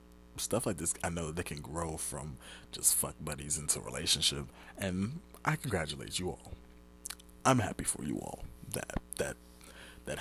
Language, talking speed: English, 170 wpm